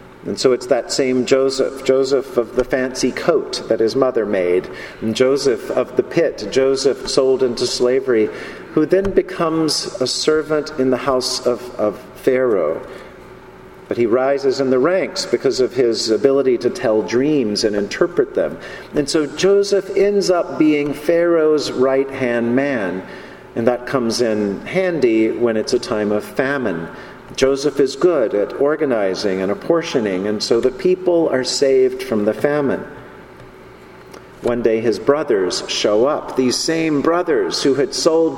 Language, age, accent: English, 50-69, American